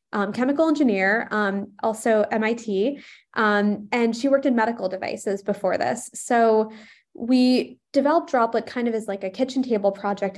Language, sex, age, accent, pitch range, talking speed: English, female, 20-39, American, 205-250 Hz, 155 wpm